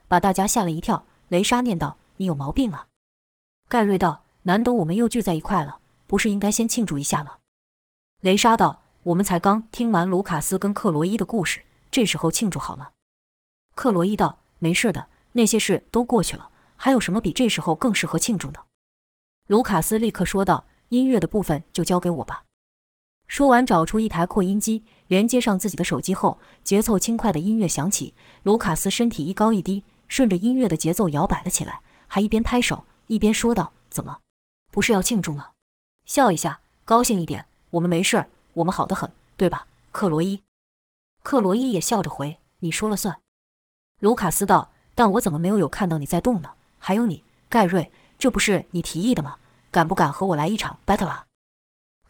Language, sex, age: Chinese, female, 20-39